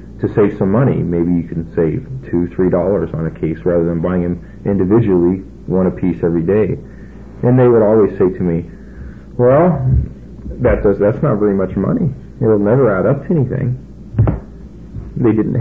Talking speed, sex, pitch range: 180 wpm, male, 85-110 Hz